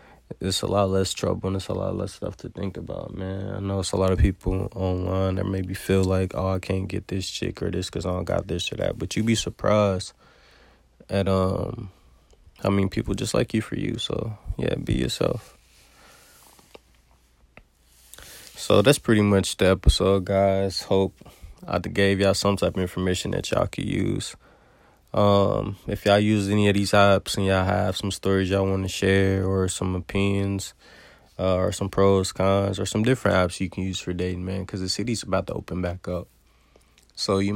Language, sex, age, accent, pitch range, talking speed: English, male, 20-39, American, 90-100 Hz, 200 wpm